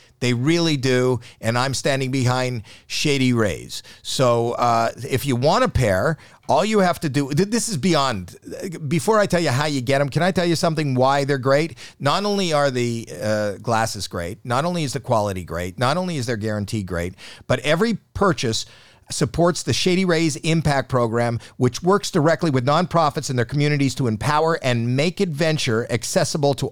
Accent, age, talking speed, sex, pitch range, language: American, 50-69, 185 wpm, male, 115-160 Hz, English